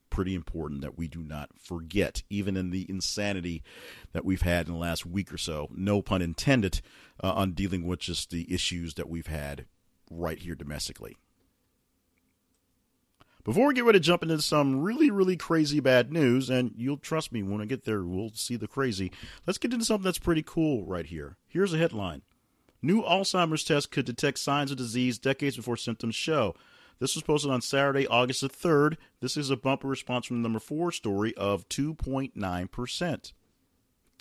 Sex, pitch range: male, 90-135 Hz